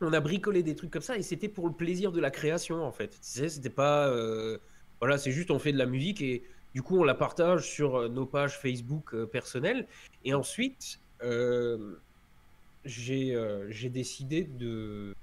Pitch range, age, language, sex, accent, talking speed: 125-155 Hz, 20-39, French, male, French, 195 wpm